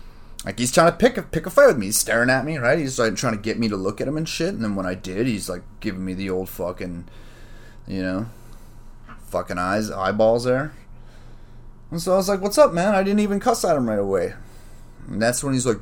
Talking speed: 255 wpm